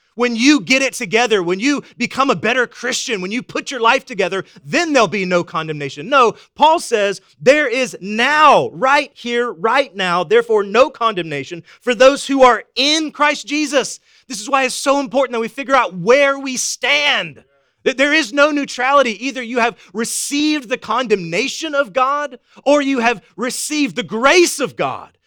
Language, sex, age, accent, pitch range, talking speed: English, male, 30-49, American, 190-265 Hz, 180 wpm